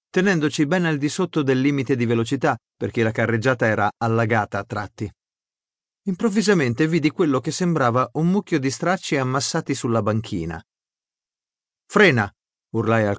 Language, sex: Italian, male